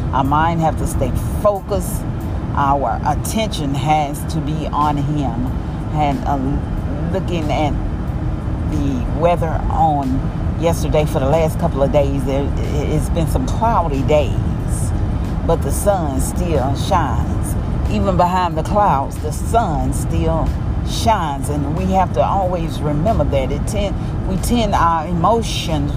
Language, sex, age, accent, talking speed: English, female, 40-59, American, 130 wpm